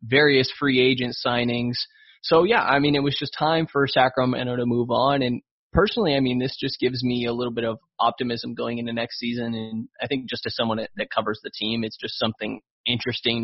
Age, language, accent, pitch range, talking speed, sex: 20-39, English, American, 120-140 Hz, 215 wpm, male